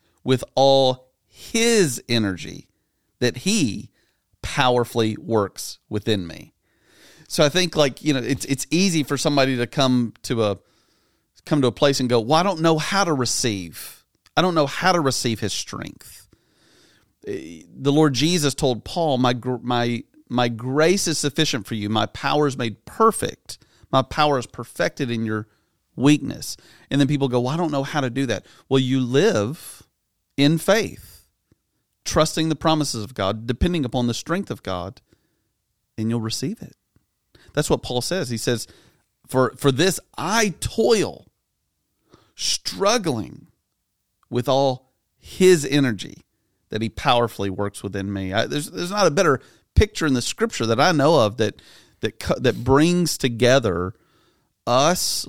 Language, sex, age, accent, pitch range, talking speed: English, male, 40-59, American, 115-150 Hz, 155 wpm